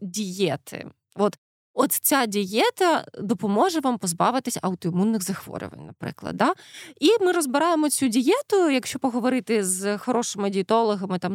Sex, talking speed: female, 120 wpm